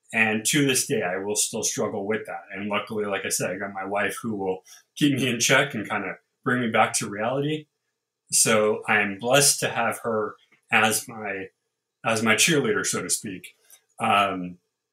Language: English